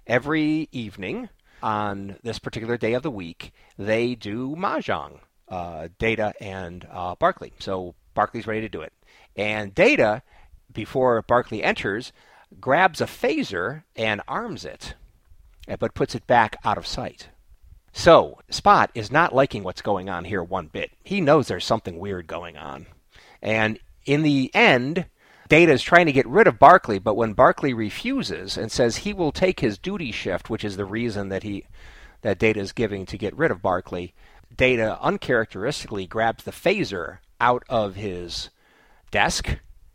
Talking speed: 160 wpm